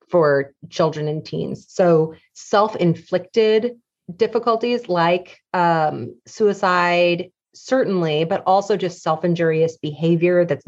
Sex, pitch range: female, 165-210 Hz